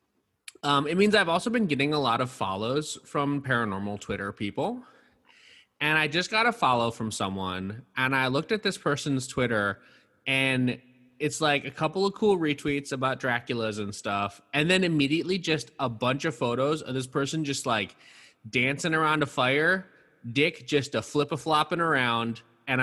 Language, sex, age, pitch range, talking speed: English, male, 20-39, 125-165 Hz, 175 wpm